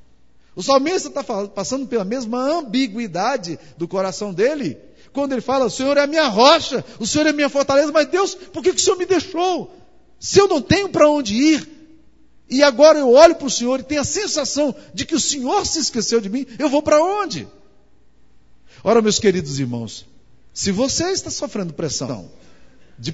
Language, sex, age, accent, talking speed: Portuguese, male, 50-69, Brazilian, 190 wpm